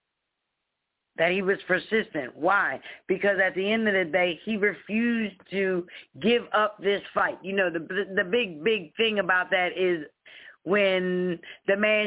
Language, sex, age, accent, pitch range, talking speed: English, female, 40-59, American, 180-230 Hz, 160 wpm